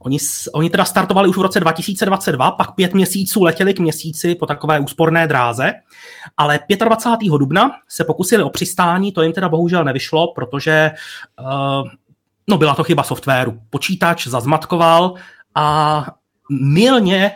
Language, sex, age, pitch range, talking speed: Czech, male, 30-49, 125-170 Hz, 135 wpm